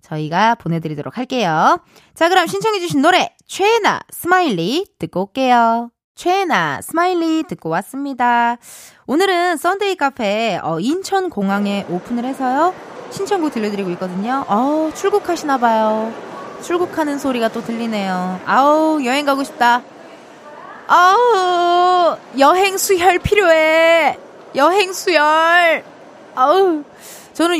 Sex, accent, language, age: female, native, Korean, 20-39